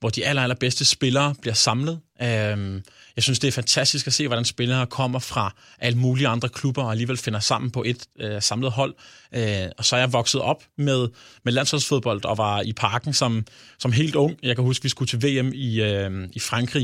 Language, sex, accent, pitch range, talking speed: Danish, male, native, 115-135 Hz, 205 wpm